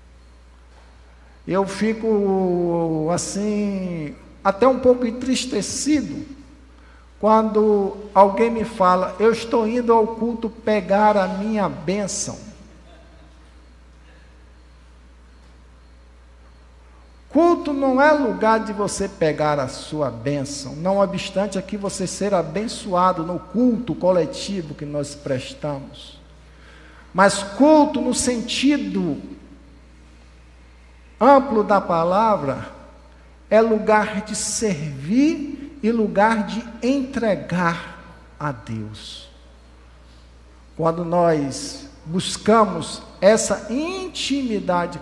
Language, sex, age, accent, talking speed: Portuguese, male, 50-69, Brazilian, 85 wpm